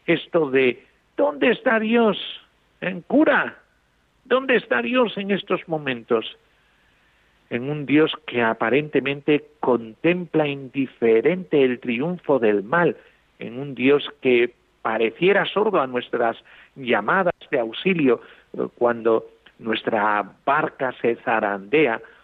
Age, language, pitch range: 50-69, Spanish, 115-165 Hz